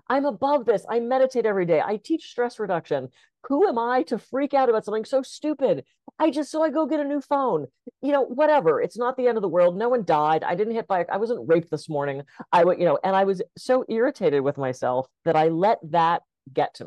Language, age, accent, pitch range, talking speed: English, 40-59, American, 145-230 Hz, 245 wpm